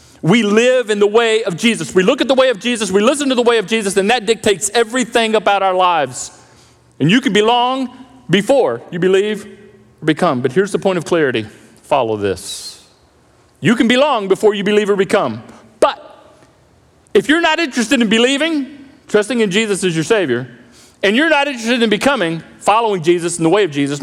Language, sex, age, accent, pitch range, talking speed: English, male, 40-59, American, 165-255 Hz, 195 wpm